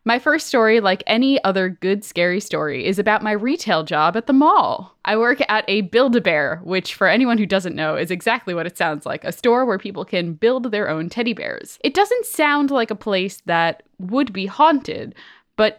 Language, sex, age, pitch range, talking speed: English, female, 10-29, 175-235 Hz, 215 wpm